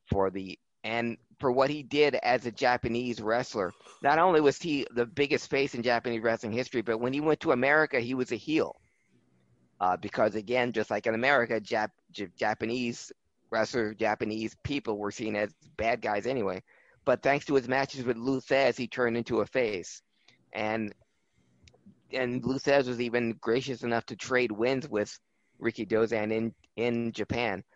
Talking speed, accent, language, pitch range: 170 wpm, American, English, 110-130 Hz